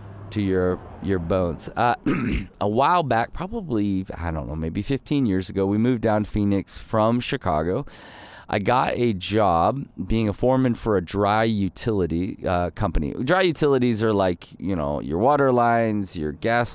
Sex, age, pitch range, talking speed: male, 30-49, 95-120 Hz, 165 wpm